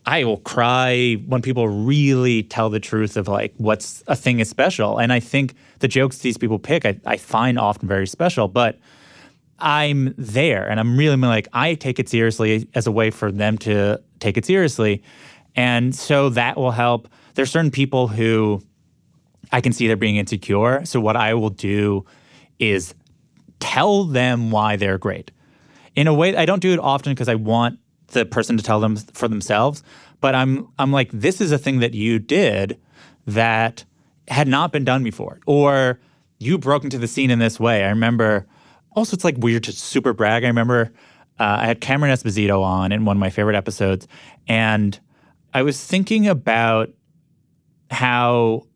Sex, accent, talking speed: male, American, 185 wpm